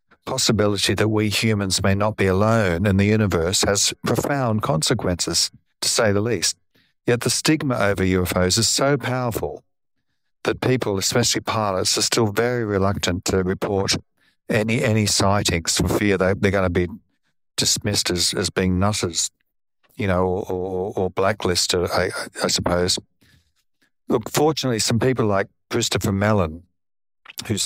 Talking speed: 145 wpm